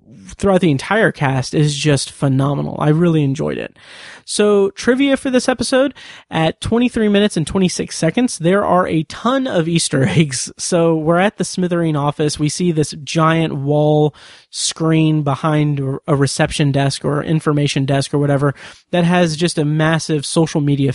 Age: 30-49